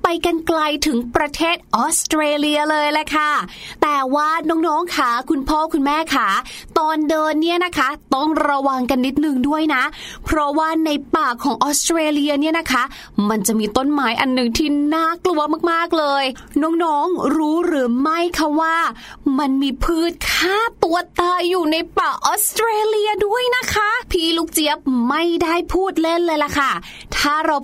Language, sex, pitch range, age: Thai, female, 265-335 Hz, 20-39